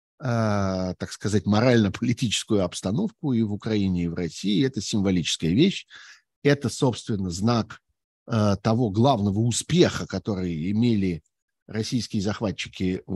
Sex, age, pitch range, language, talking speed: male, 50-69, 105-135 Hz, Russian, 110 wpm